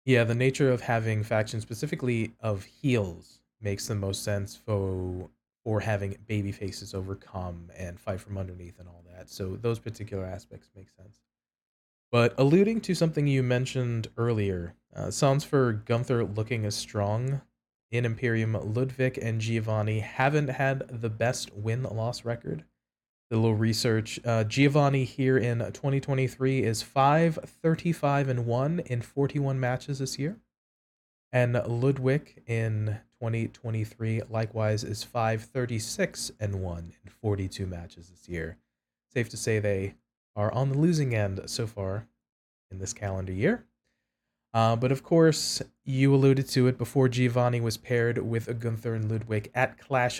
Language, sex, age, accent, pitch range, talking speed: English, male, 20-39, American, 105-130 Hz, 145 wpm